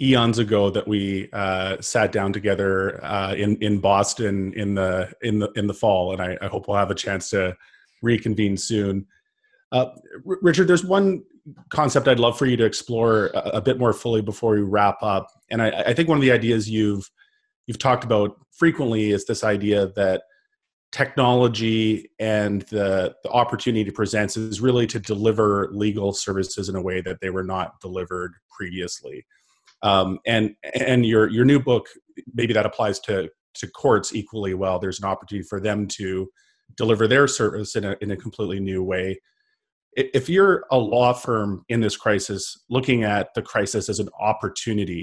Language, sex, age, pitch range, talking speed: English, male, 30-49, 100-120 Hz, 180 wpm